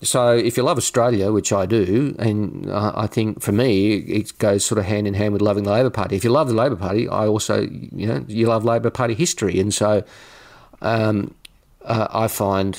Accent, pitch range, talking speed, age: Australian, 100-115 Hz, 210 wpm, 40-59